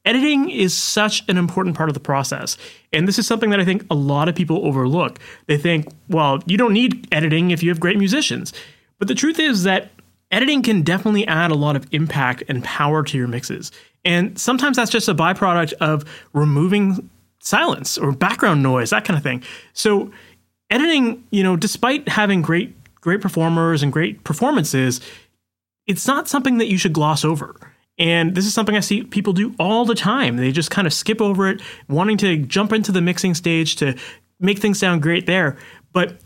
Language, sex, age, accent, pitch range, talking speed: English, male, 30-49, American, 150-200 Hz, 195 wpm